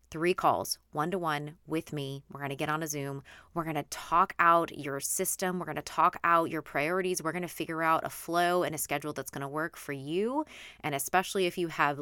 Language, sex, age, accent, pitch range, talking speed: English, female, 20-39, American, 160-215 Hz, 245 wpm